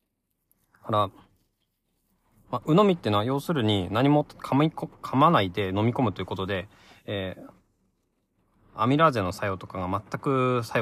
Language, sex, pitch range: Japanese, male, 95-140 Hz